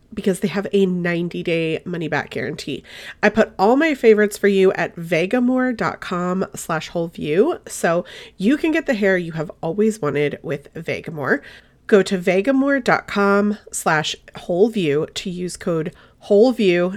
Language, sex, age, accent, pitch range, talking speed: English, female, 30-49, American, 165-210 Hz, 135 wpm